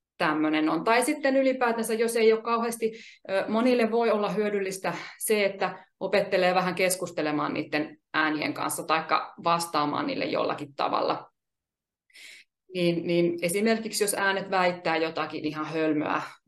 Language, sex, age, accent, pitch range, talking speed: Finnish, female, 30-49, native, 175-235 Hz, 125 wpm